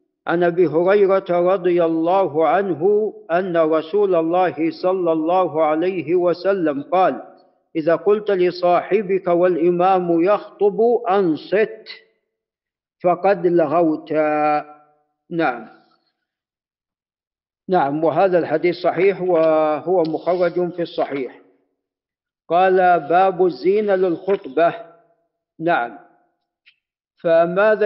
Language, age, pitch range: Arabic, 50-69, 165-210 Hz